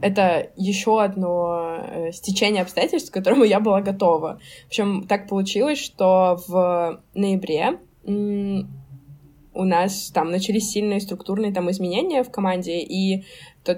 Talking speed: 125 wpm